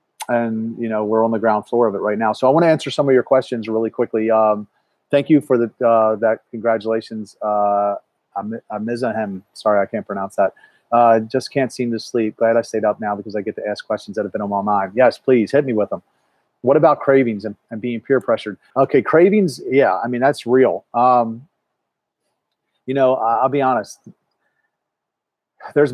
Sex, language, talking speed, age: male, English, 210 wpm, 30-49